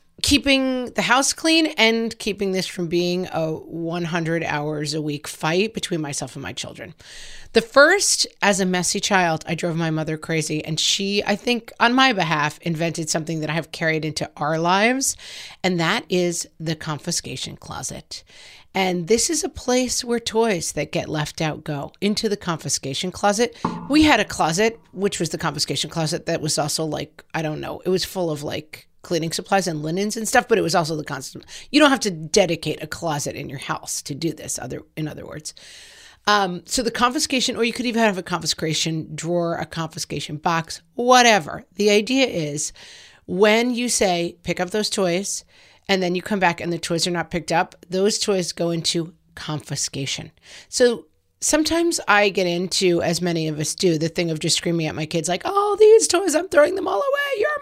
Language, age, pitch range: English, 40-59, 160-225 Hz